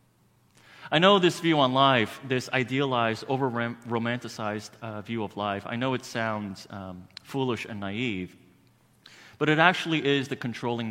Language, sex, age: English, male, 30-49